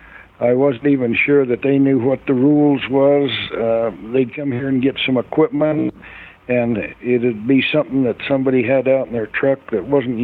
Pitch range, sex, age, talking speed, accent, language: 110-140 Hz, male, 60-79, 190 wpm, American, English